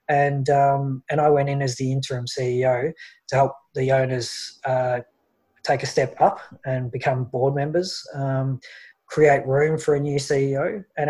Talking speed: 170 wpm